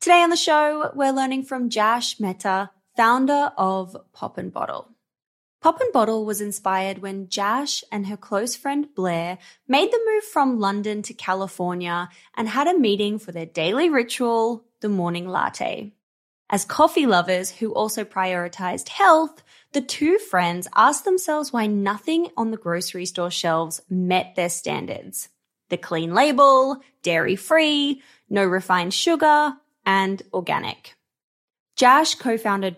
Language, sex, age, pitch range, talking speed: English, female, 20-39, 185-275 Hz, 145 wpm